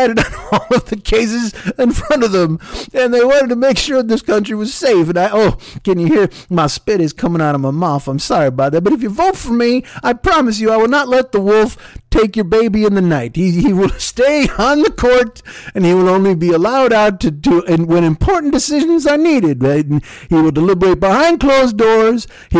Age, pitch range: 50-69, 175-255 Hz